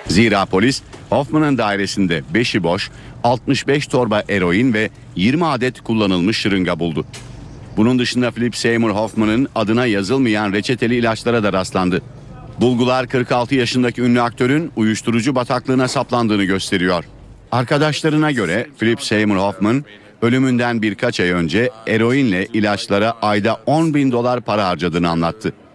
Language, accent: Turkish, native